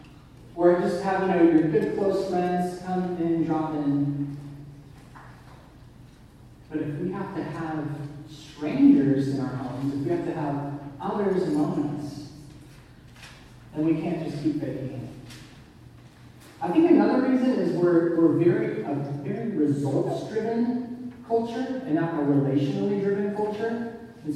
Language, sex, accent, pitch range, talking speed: English, male, American, 140-175 Hz, 135 wpm